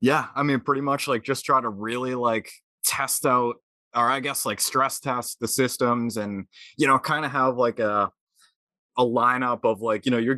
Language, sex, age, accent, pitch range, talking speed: English, male, 20-39, American, 115-140 Hz, 210 wpm